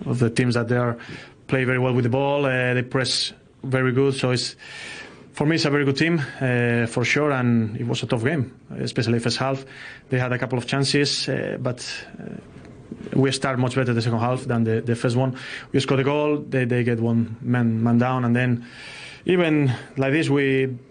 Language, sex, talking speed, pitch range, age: English, male, 225 wpm, 120-140 Hz, 30-49